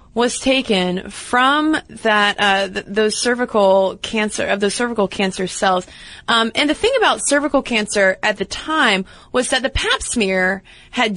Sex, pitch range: female, 195-250 Hz